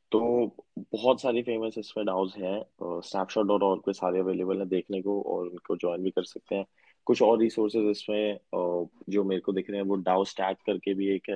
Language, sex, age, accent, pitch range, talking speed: Hindi, male, 20-39, native, 95-105 Hz, 75 wpm